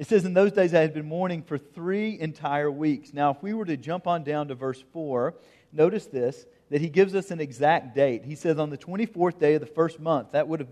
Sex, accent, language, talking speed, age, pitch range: male, American, English, 260 wpm, 40-59, 135-180 Hz